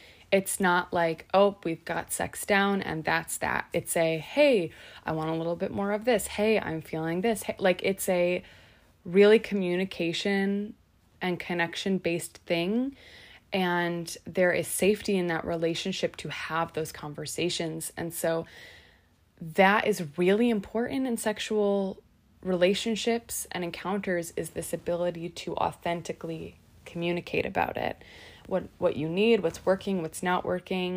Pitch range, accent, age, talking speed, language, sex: 160-195 Hz, American, 20-39, 140 wpm, English, female